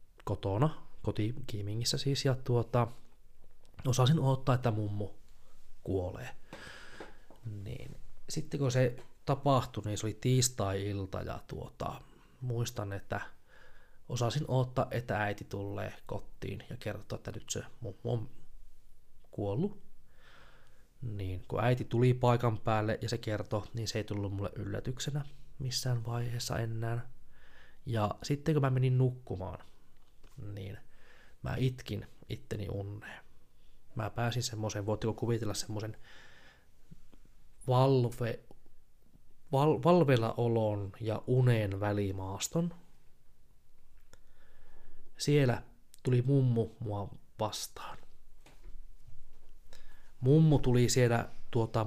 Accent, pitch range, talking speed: native, 105-130 Hz, 100 wpm